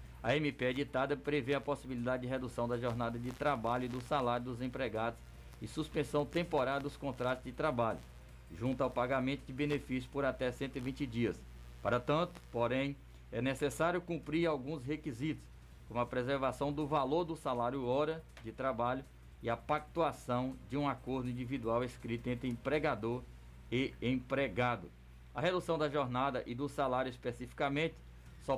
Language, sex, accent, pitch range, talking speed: Portuguese, male, Brazilian, 120-145 Hz, 150 wpm